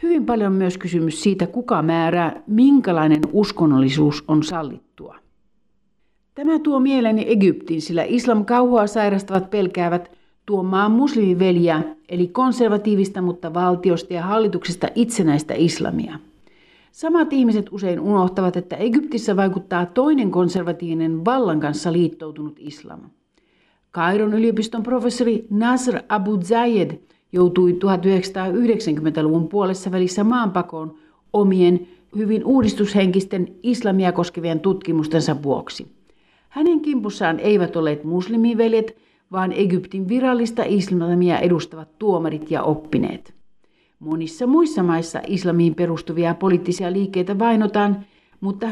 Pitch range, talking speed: 170-220 Hz, 100 wpm